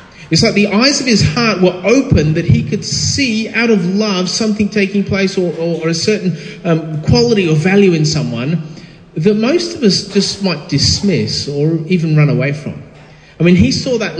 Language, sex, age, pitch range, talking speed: English, male, 30-49, 145-205 Hz, 200 wpm